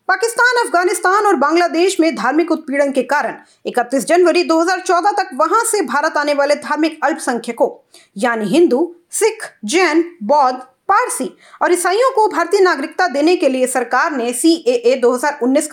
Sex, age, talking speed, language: female, 30-49, 150 wpm, English